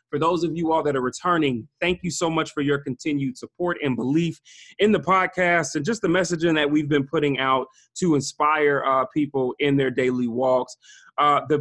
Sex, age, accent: male, 30-49, American